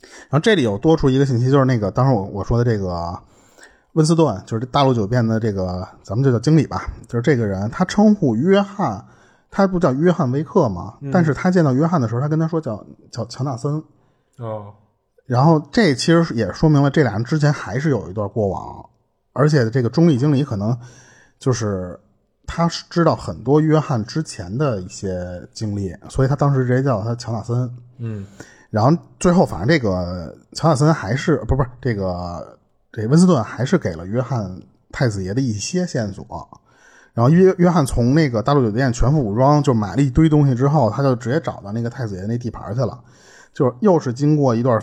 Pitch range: 110-150 Hz